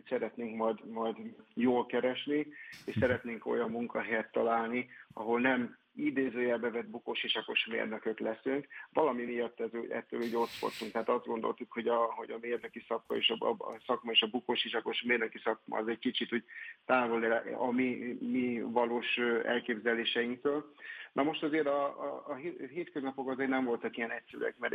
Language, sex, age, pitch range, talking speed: Hungarian, male, 50-69, 115-130 Hz, 155 wpm